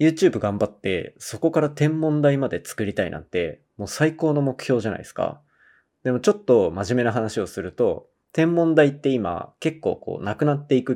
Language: Japanese